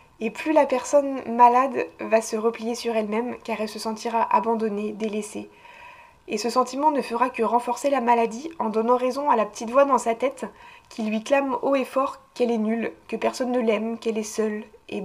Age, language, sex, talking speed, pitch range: 20-39, French, female, 205 wpm, 225-285 Hz